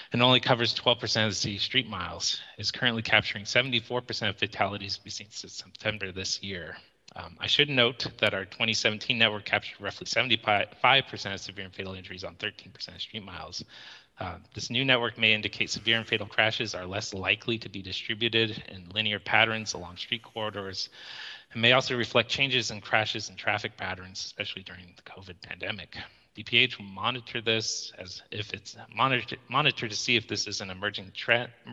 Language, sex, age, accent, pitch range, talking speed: English, male, 30-49, American, 100-120 Hz, 180 wpm